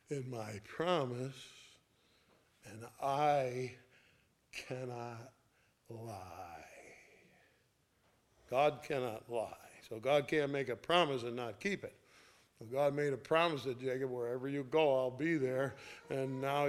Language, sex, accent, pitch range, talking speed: English, male, American, 130-160 Hz, 120 wpm